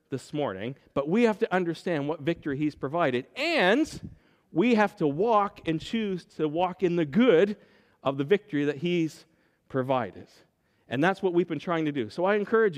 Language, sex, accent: English, male, American